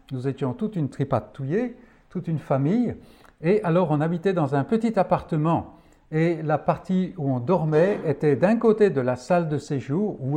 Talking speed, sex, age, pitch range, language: 185 wpm, male, 60-79, 140-195 Hz, French